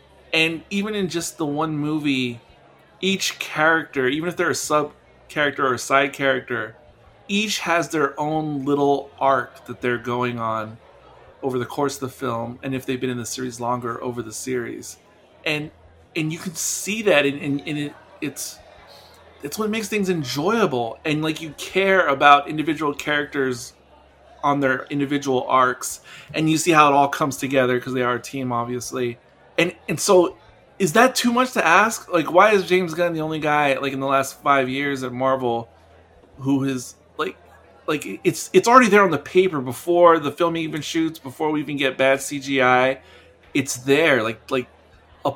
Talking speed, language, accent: 185 wpm, English, American